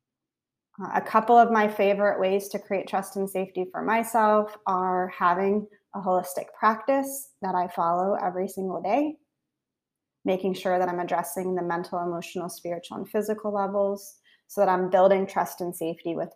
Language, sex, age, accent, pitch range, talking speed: English, female, 30-49, American, 180-210 Hz, 160 wpm